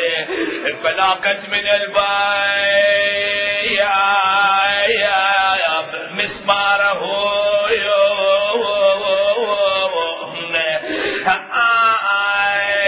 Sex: male